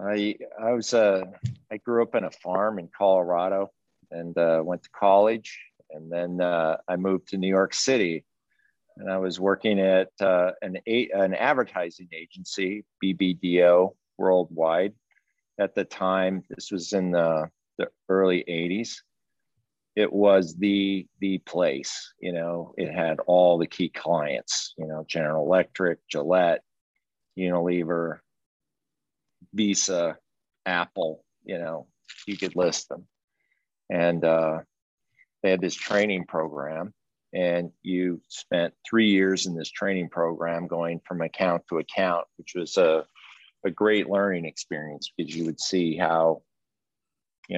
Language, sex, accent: English, male, American